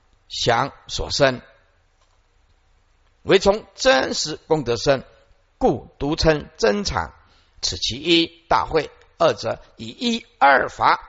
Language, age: Chinese, 50-69